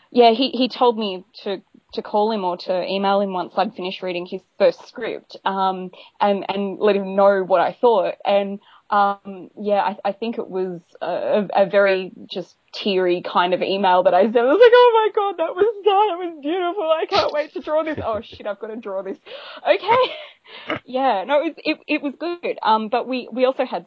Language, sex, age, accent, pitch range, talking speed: English, female, 20-39, Australian, 185-225 Hz, 220 wpm